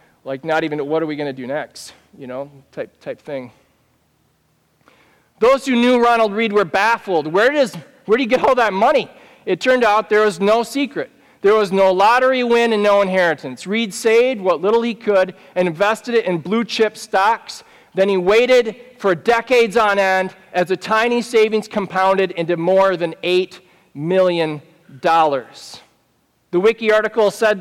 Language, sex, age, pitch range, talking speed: English, male, 40-59, 180-220 Hz, 170 wpm